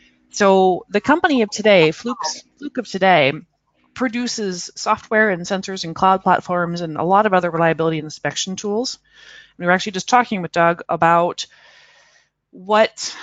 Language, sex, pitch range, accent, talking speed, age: English, female, 165-215 Hz, American, 155 wpm, 30-49